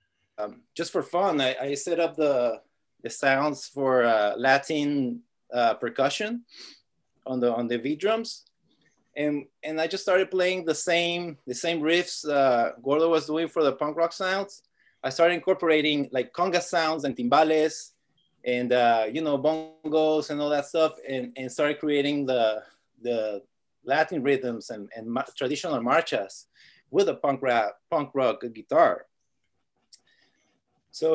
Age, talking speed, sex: 30-49, 150 wpm, male